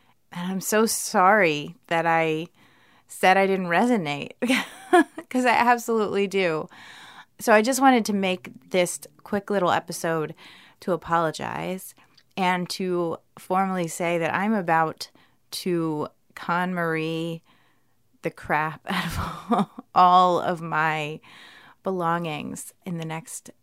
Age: 20-39